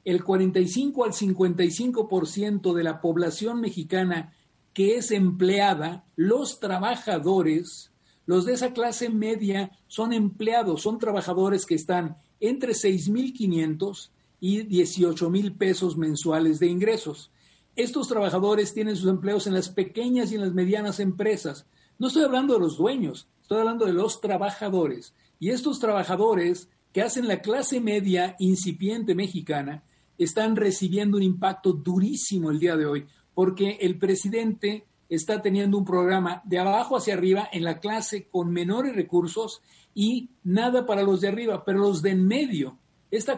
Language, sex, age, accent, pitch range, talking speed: Spanish, male, 60-79, Mexican, 180-220 Hz, 145 wpm